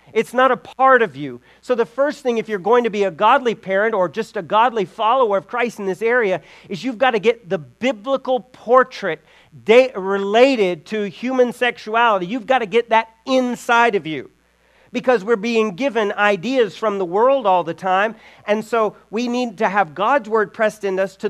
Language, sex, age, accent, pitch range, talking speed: English, male, 40-59, American, 190-220 Hz, 205 wpm